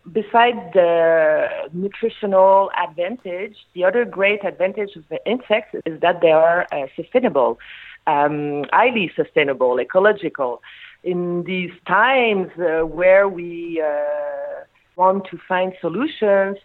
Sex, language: female, English